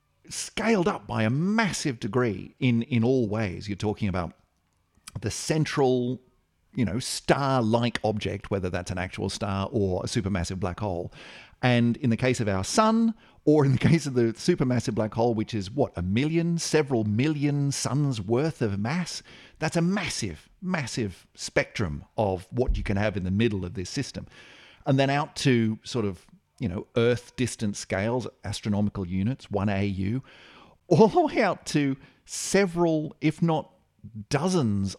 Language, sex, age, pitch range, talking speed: English, male, 40-59, 105-170 Hz, 165 wpm